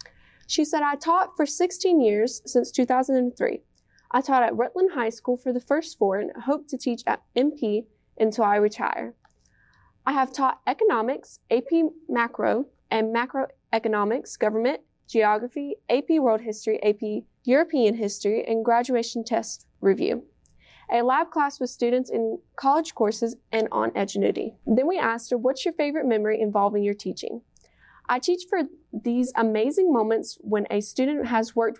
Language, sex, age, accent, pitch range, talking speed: English, female, 20-39, American, 225-275 Hz, 155 wpm